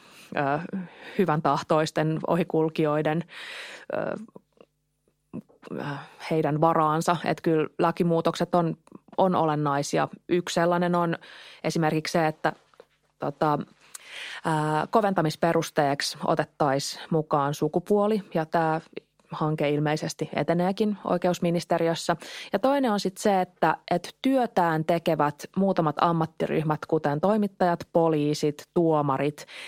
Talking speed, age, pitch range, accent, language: 80 wpm, 20-39, 150-180 Hz, native, Finnish